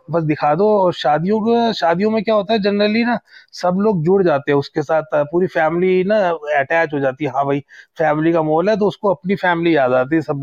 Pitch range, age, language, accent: 140-195 Hz, 30-49, Hindi, native